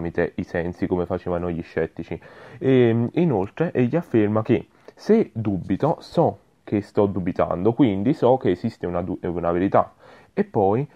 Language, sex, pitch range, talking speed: Italian, male, 95-125 Hz, 150 wpm